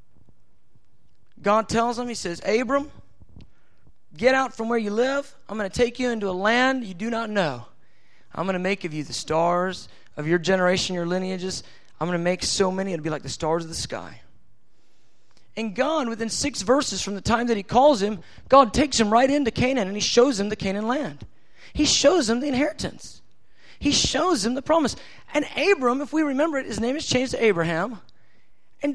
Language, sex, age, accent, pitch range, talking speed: English, male, 30-49, American, 175-275 Hz, 205 wpm